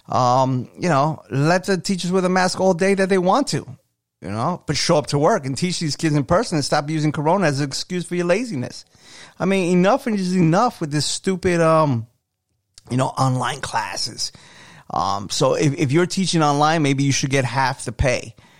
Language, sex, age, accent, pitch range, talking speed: English, male, 30-49, American, 125-165 Hz, 210 wpm